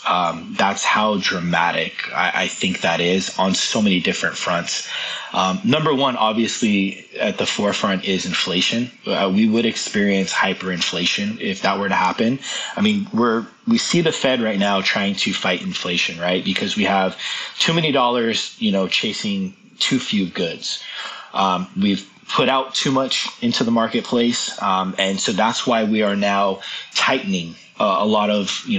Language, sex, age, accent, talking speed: English, male, 20-39, American, 175 wpm